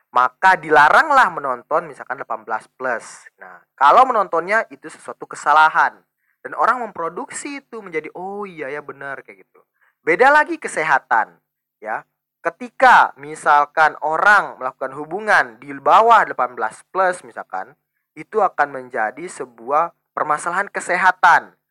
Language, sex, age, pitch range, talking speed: Indonesian, male, 20-39, 130-185 Hz, 120 wpm